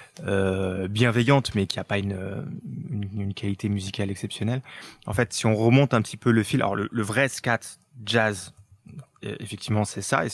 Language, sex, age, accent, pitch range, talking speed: French, male, 20-39, French, 105-140 Hz, 185 wpm